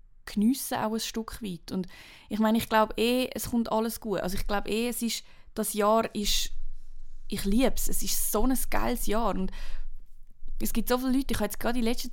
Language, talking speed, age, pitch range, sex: German, 225 wpm, 20-39, 185-220 Hz, female